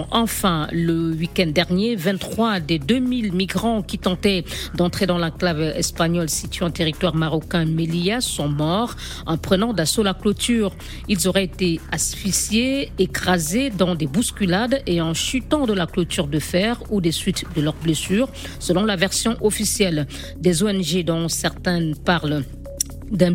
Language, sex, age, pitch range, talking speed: French, female, 50-69, 170-225 Hz, 150 wpm